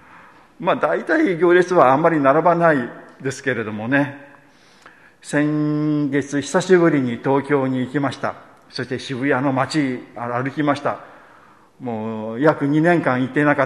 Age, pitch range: 50-69, 120-150 Hz